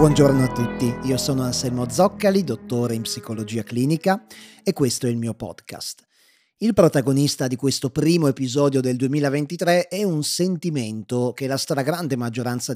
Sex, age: male, 30-49